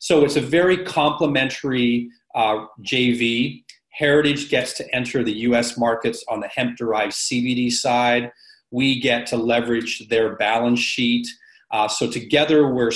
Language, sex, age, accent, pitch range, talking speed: English, male, 30-49, American, 115-140 Hz, 135 wpm